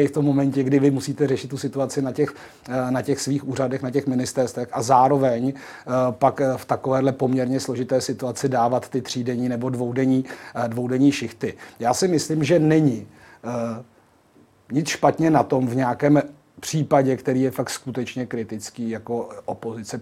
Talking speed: 160 wpm